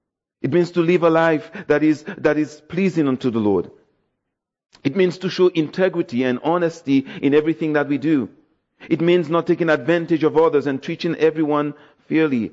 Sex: male